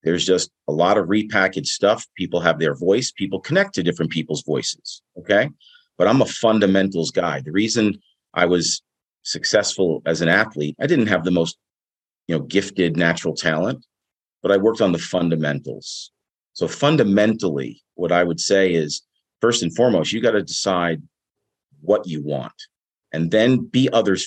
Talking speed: 170 wpm